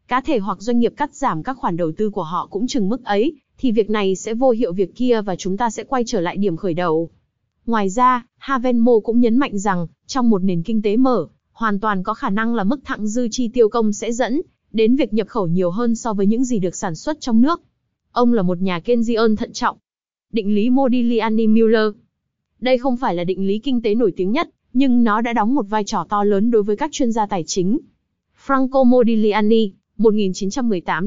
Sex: female